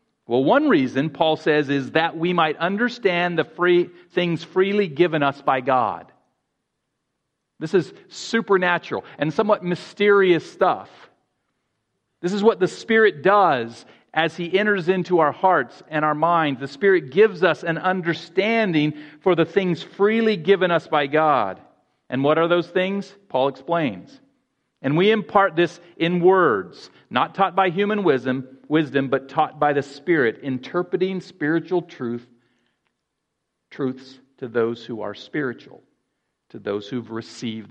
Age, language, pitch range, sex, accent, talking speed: 40-59, English, 140-195 Hz, male, American, 145 wpm